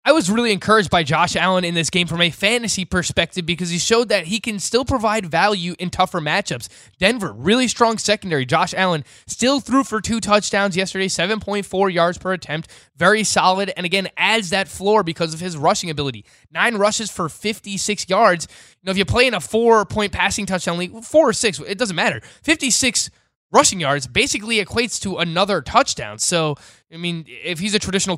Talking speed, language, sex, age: 195 wpm, English, male, 20-39